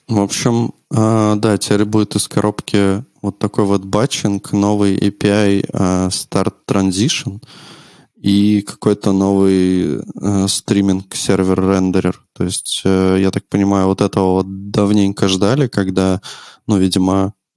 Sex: male